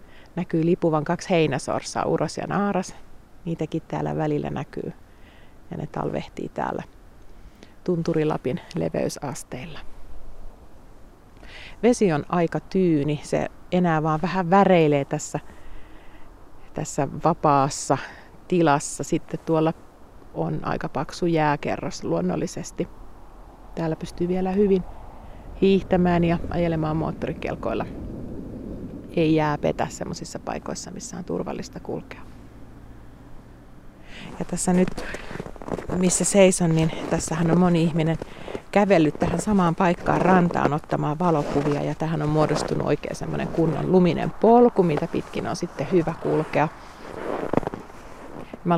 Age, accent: 30-49, native